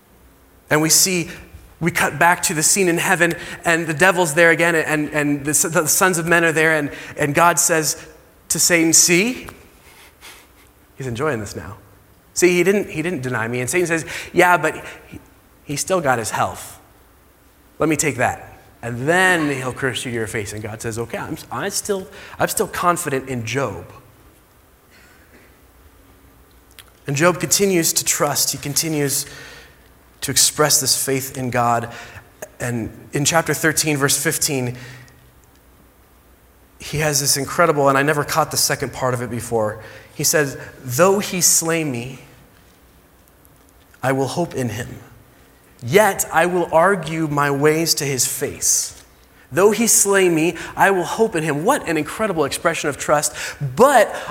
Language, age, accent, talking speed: English, 30-49, American, 160 wpm